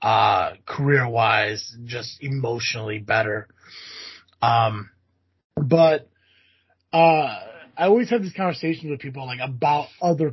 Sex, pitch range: male, 110-145 Hz